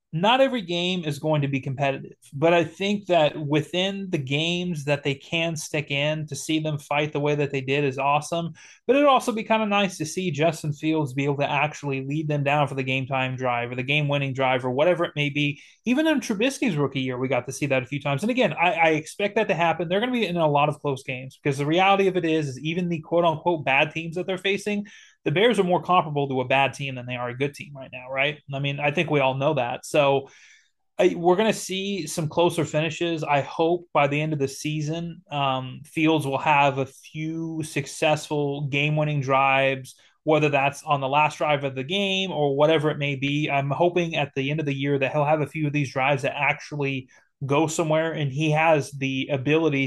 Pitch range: 135-165 Hz